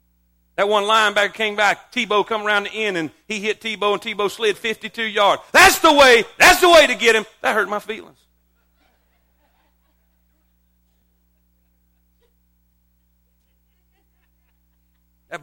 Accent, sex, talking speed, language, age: American, male, 130 wpm, English, 50-69